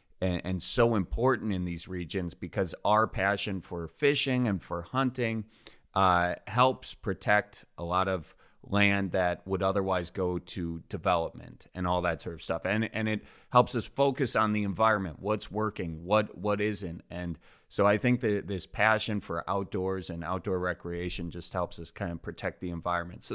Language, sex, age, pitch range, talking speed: English, male, 30-49, 90-115 Hz, 175 wpm